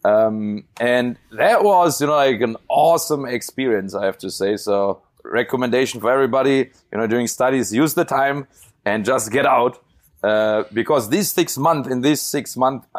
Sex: male